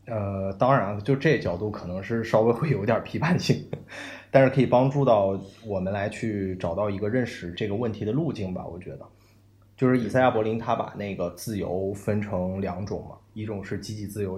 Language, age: Chinese, 20-39